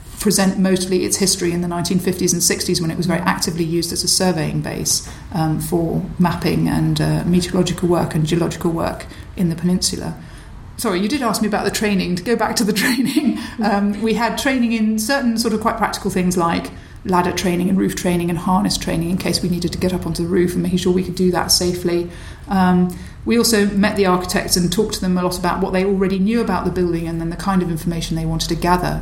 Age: 40-59